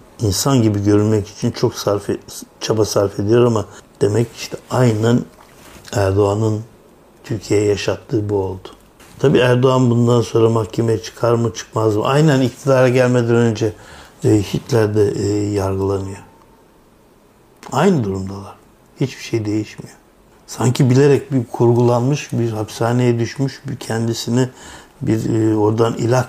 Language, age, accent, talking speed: Turkish, 60-79, native, 115 wpm